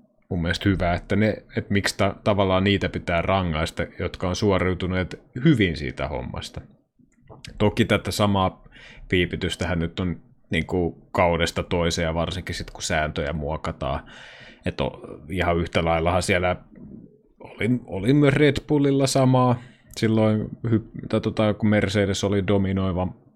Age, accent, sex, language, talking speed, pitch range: 30-49, native, male, Finnish, 130 wpm, 85-105 Hz